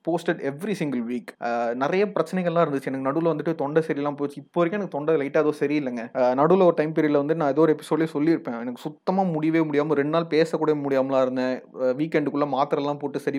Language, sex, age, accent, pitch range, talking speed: Tamil, male, 30-49, native, 135-160 Hz, 195 wpm